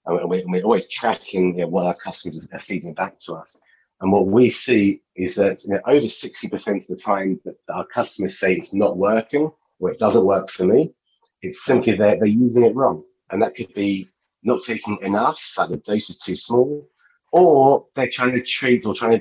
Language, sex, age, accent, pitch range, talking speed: English, male, 30-49, British, 95-120 Hz, 200 wpm